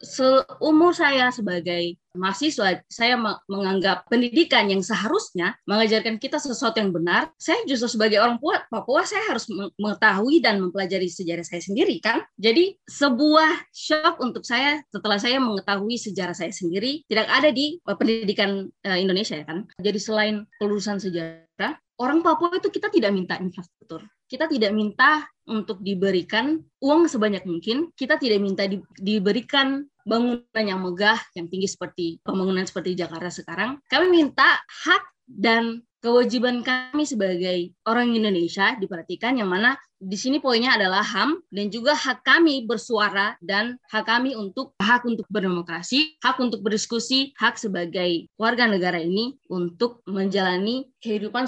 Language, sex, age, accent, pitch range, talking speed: Indonesian, female, 20-39, native, 185-255 Hz, 140 wpm